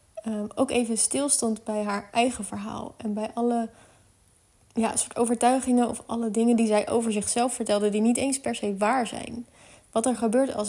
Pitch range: 205-235 Hz